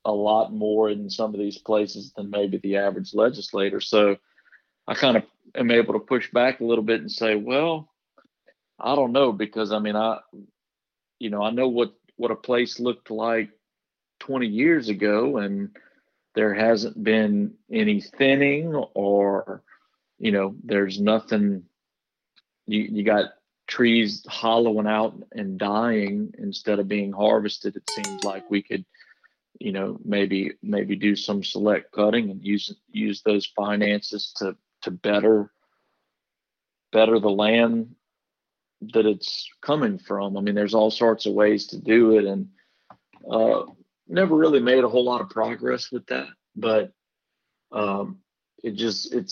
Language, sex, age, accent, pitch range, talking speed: English, male, 40-59, American, 105-120 Hz, 155 wpm